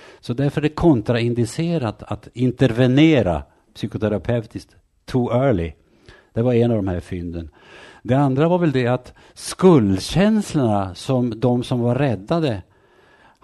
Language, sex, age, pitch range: Danish, male, 60-79, 100-140 Hz